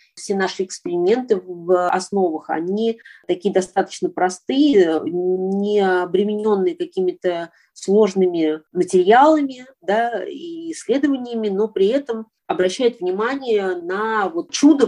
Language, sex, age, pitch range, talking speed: Russian, female, 30-49, 185-280 Hz, 95 wpm